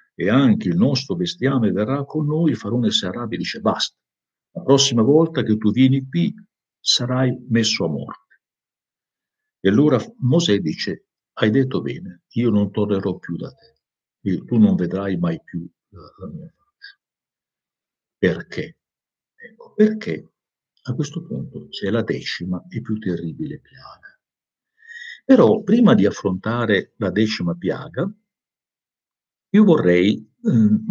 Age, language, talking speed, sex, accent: 50-69, Italian, 135 wpm, male, native